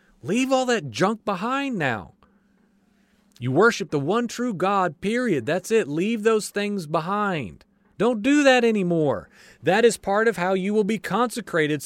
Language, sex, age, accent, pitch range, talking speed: English, male, 40-59, American, 175-225 Hz, 160 wpm